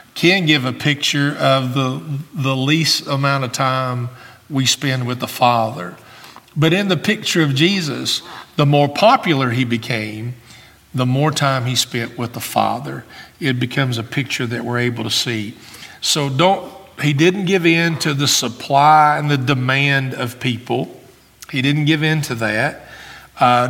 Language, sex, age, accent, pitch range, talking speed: English, male, 50-69, American, 120-145 Hz, 165 wpm